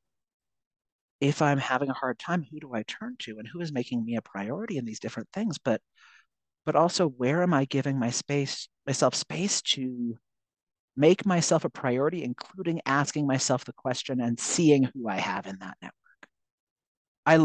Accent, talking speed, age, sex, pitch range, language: American, 180 wpm, 40-59, male, 125-180 Hz, English